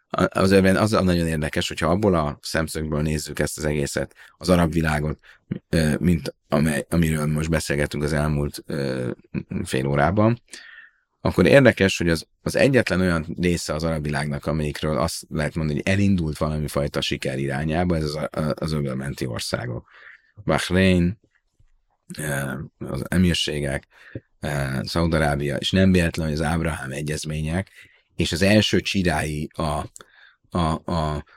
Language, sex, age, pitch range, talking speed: Hungarian, male, 30-49, 75-90 Hz, 130 wpm